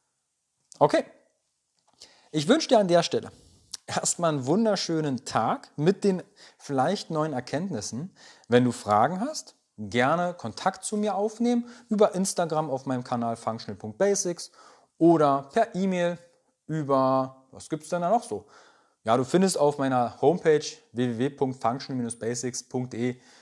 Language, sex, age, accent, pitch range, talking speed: German, male, 40-59, German, 125-175 Hz, 125 wpm